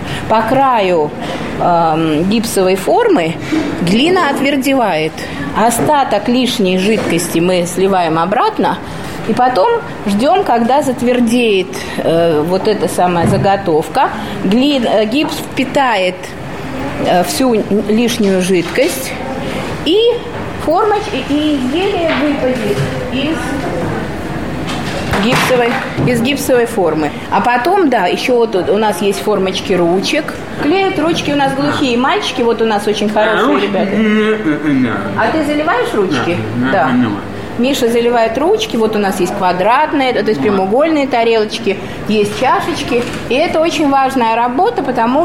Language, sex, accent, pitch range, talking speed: Russian, female, native, 195-275 Hz, 115 wpm